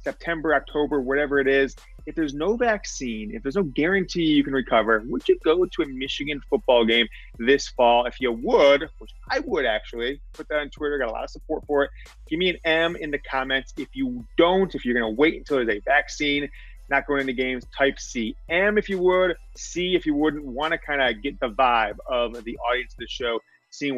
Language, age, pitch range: English, 30-49, 125-160 Hz